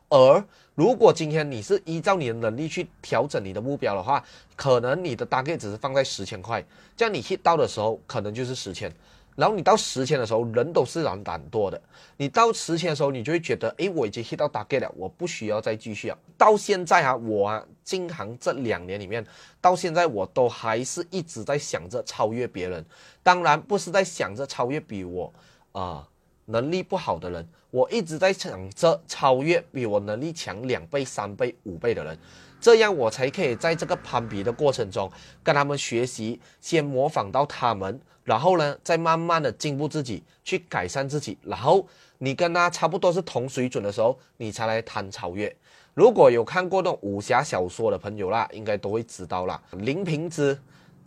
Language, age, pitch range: Chinese, 30-49, 115-170 Hz